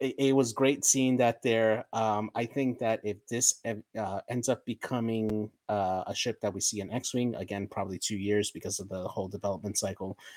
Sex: male